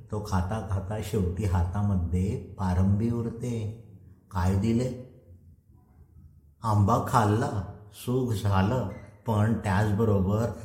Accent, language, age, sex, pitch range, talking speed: native, Marathi, 50-69, male, 95-120 Hz, 70 wpm